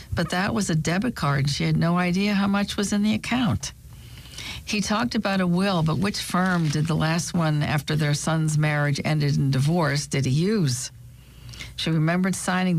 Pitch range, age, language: 150-200 Hz, 60-79, English